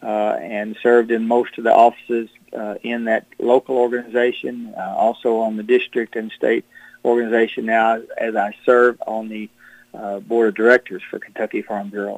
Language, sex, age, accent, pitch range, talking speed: English, male, 40-59, American, 110-125 Hz, 175 wpm